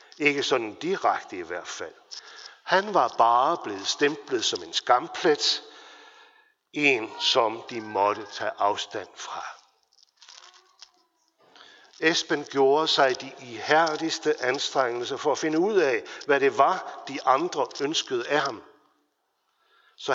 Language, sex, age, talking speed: Danish, male, 60-79, 120 wpm